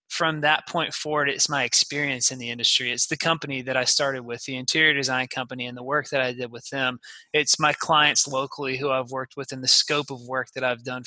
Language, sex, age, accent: English, male, 20-39, American